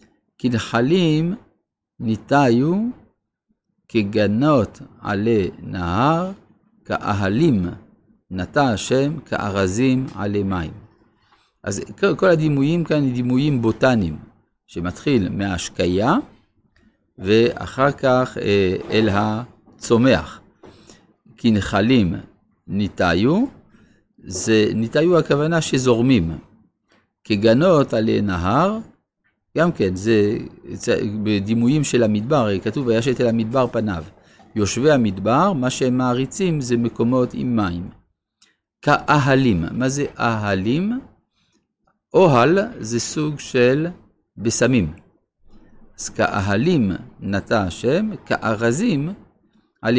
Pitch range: 105-140 Hz